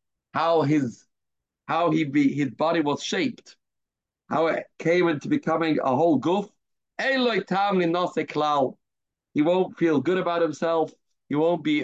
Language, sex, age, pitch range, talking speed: English, male, 40-59, 135-180 Hz, 130 wpm